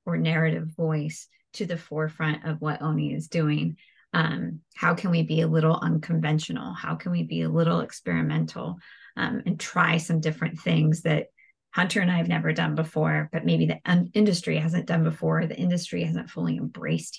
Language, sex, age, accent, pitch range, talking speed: English, female, 30-49, American, 155-175 Hz, 180 wpm